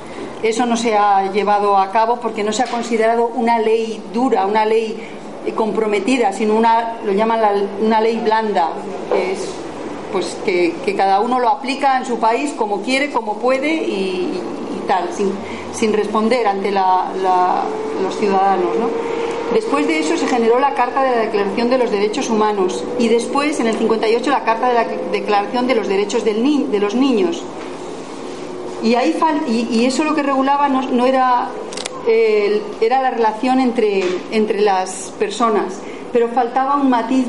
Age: 40-59